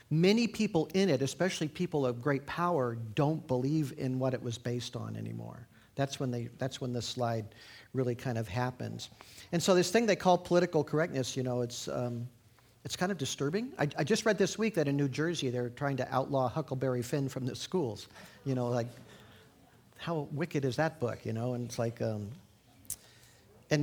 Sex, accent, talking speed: male, American, 200 wpm